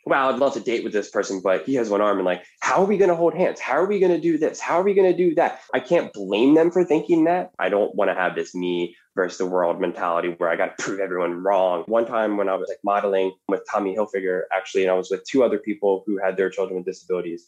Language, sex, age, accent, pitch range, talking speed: English, male, 10-29, American, 95-155 Hz, 295 wpm